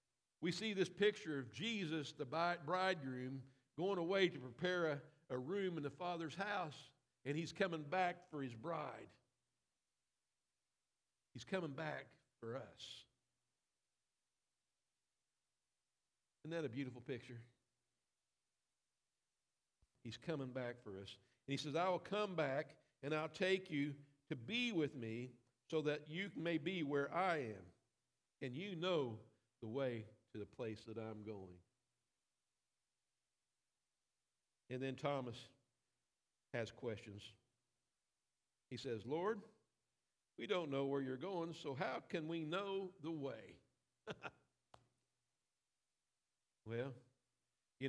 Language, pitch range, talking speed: English, 125-160 Hz, 120 wpm